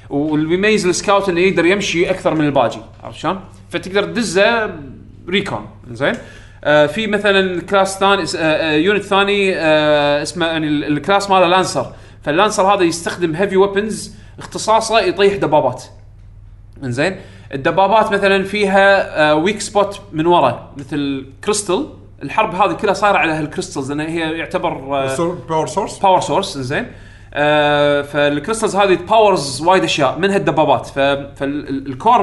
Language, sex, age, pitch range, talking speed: Arabic, male, 30-49, 135-195 Hz, 120 wpm